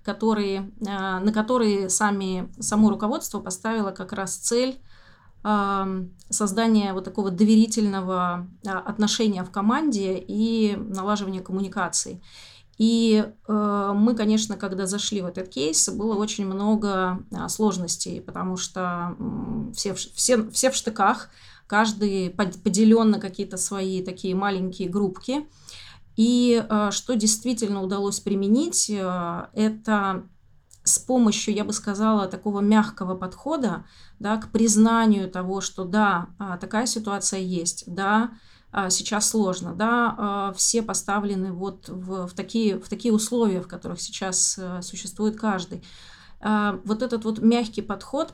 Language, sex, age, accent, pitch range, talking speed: Russian, female, 30-49, native, 190-220 Hz, 110 wpm